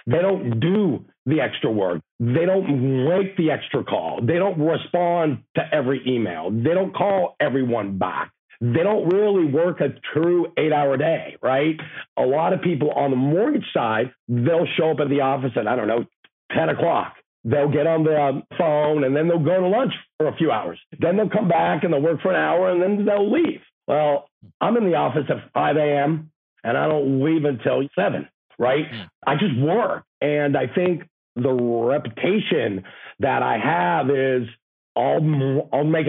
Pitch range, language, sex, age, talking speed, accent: 130-165 Hz, English, male, 50-69, 185 wpm, American